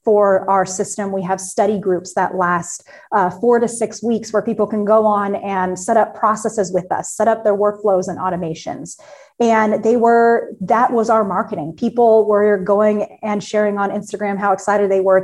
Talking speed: 195 wpm